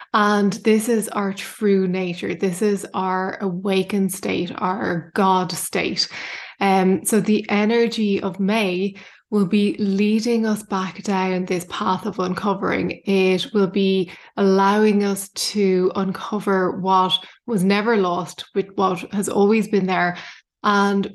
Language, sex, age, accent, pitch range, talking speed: English, female, 20-39, Irish, 190-210 Hz, 135 wpm